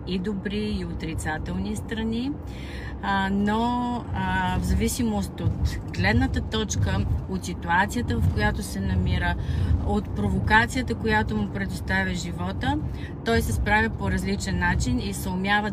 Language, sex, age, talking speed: Bulgarian, female, 30-49, 125 wpm